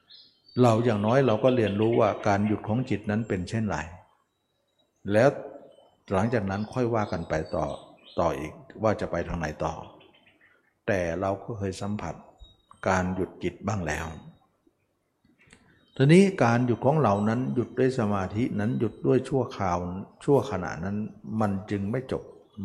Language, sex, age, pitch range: Thai, male, 60-79, 95-120 Hz